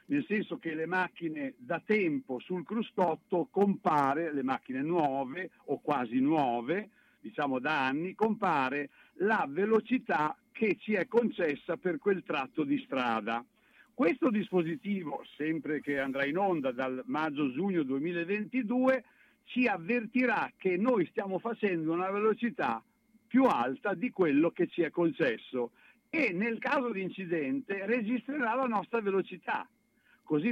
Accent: native